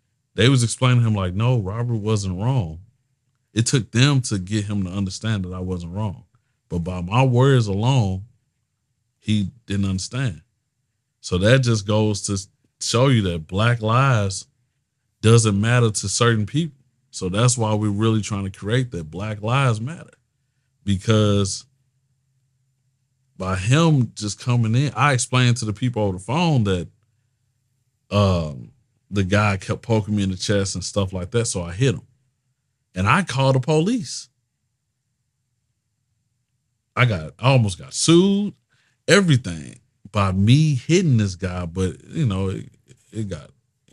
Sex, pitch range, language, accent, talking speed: male, 100-130 Hz, English, American, 155 wpm